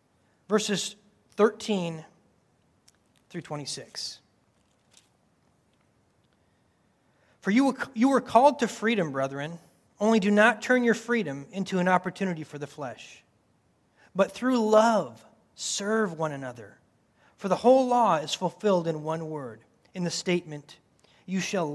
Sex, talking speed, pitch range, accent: male, 120 wpm, 155-210 Hz, American